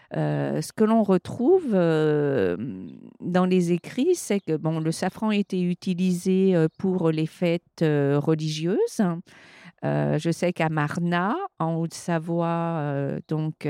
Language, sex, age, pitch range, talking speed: French, female, 50-69, 155-185 Hz, 125 wpm